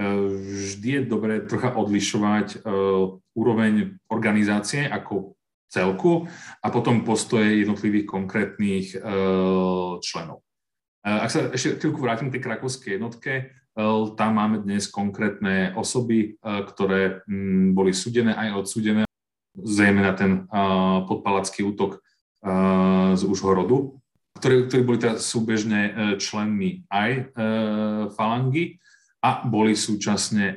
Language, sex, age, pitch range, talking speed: Slovak, male, 40-59, 100-115 Hz, 120 wpm